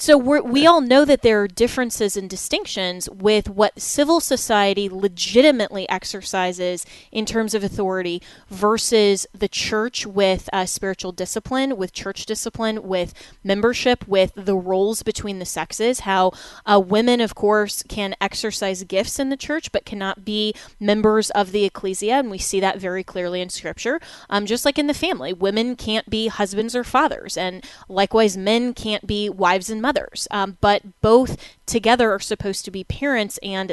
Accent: American